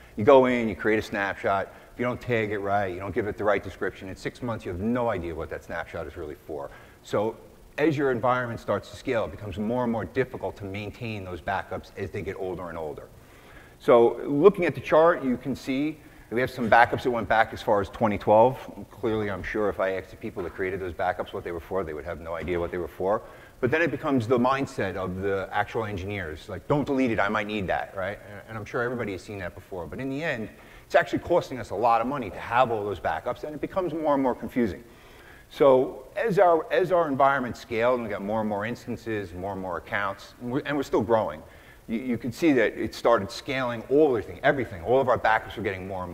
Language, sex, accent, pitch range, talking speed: English, male, American, 100-130 Hz, 250 wpm